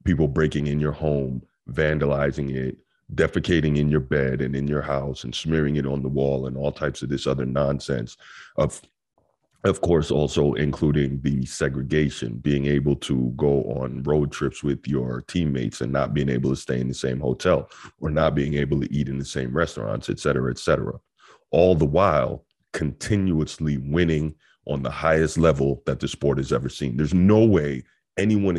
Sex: male